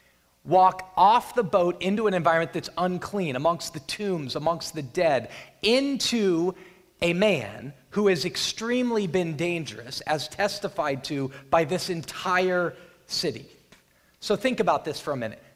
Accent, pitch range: American, 140-195 Hz